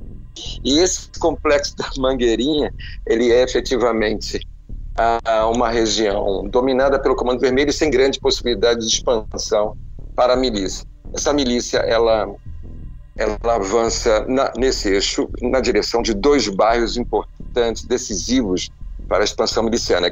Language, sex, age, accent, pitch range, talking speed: Portuguese, male, 50-69, Brazilian, 105-135 Hz, 120 wpm